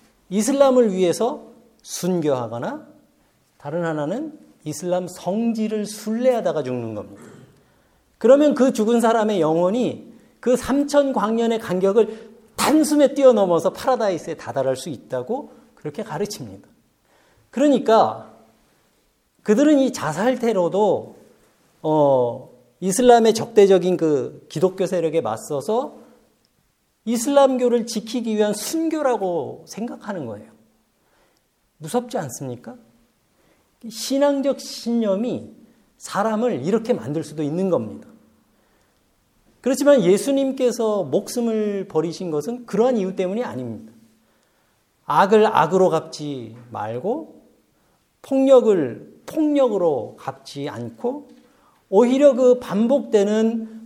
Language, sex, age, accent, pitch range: Korean, male, 40-59, native, 180-255 Hz